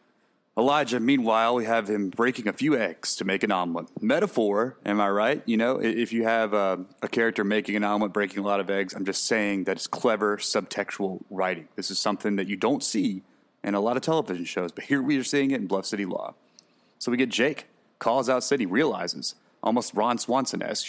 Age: 30-49